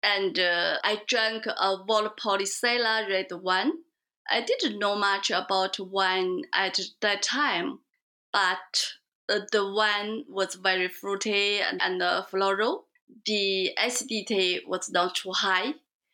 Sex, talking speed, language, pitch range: female, 125 wpm, English, 190-240 Hz